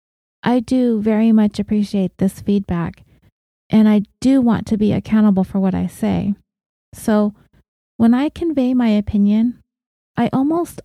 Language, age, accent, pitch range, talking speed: English, 30-49, American, 190-235 Hz, 145 wpm